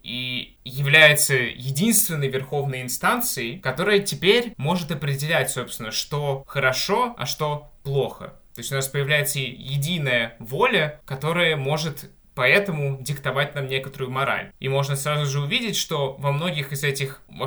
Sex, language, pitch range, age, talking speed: male, Russian, 125-150 Hz, 20-39, 135 wpm